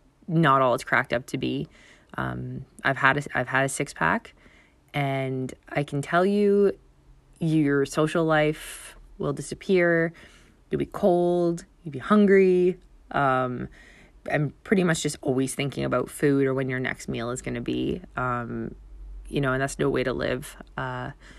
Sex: female